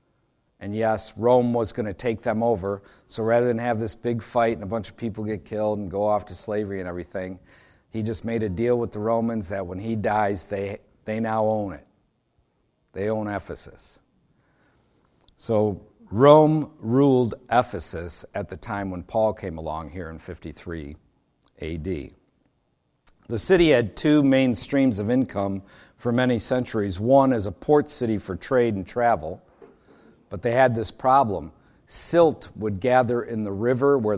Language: English